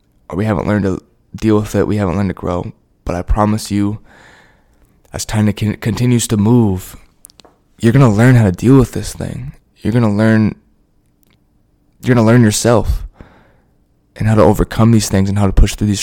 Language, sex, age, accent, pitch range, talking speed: English, male, 20-39, American, 95-115 Hz, 195 wpm